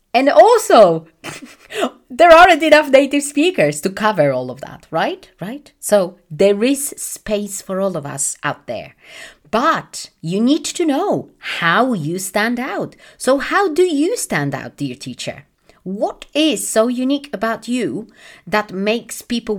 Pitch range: 175-260 Hz